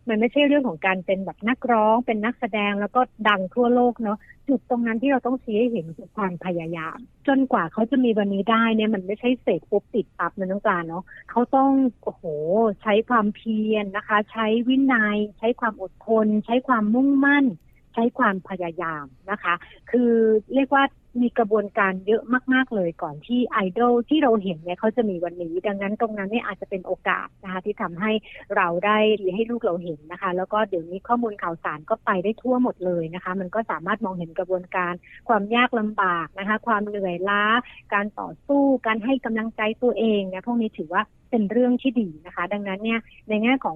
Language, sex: Thai, female